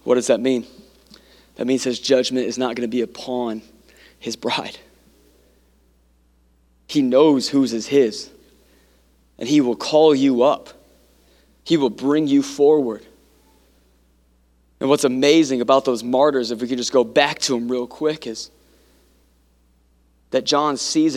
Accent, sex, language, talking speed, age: American, male, English, 145 wpm, 20-39